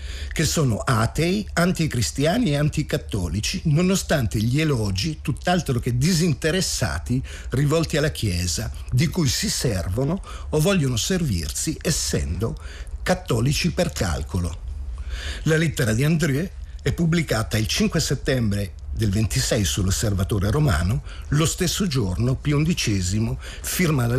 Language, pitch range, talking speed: Italian, 95-160 Hz, 115 wpm